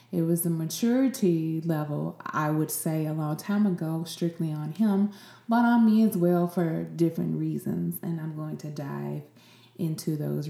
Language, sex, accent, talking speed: English, female, American, 170 wpm